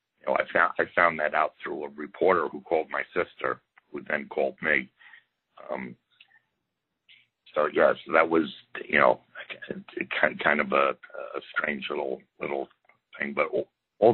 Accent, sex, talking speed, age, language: American, male, 160 wpm, 60-79, English